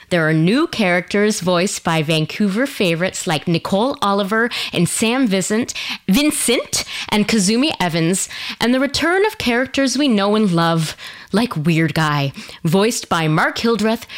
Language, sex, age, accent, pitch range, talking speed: English, female, 20-39, American, 185-255 Hz, 145 wpm